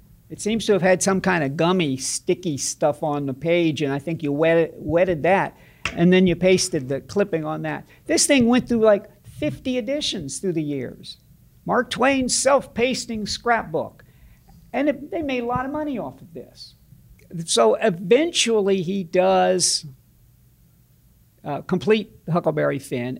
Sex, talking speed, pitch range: male, 160 wpm, 150-200 Hz